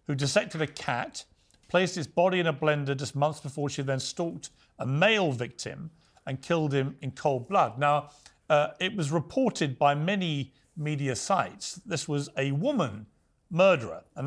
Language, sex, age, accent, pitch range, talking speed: English, male, 40-59, British, 130-170 Hz, 175 wpm